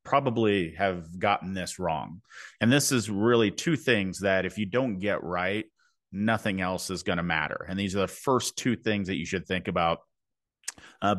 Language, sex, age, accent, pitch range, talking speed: English, male, 30-49, American, 90-110 Hz, 195 wpm